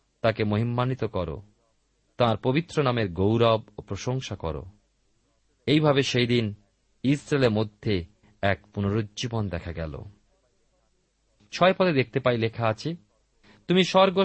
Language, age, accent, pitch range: Bengali, 40-59, native, 105-170 Hz